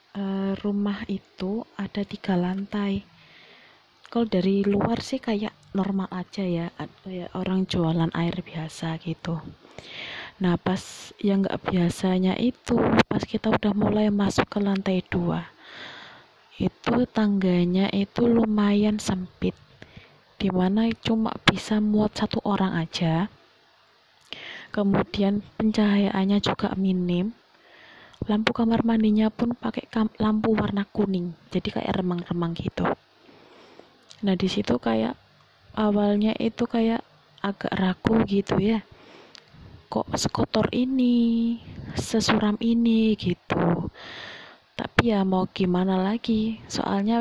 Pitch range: 185-220 Hz